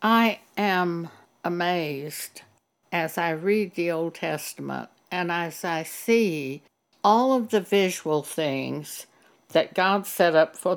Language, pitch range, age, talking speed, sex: English, 155-200 Hz, 60-79, 130 wpm, female